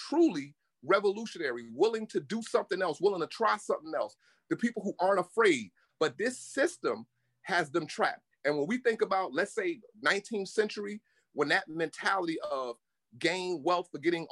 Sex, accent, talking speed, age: male, American, 165 wpm, 30-49